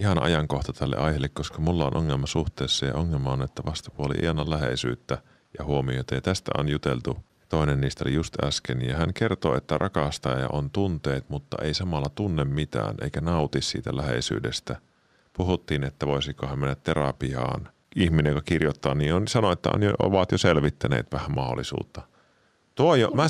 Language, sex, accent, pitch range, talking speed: Finnish, male, native, 70-105 Hz, 160 wpm